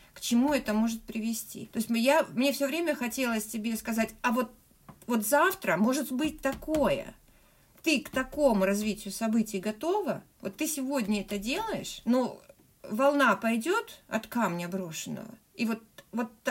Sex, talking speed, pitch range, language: female, 150 wpm, 210-270 Hz, Russian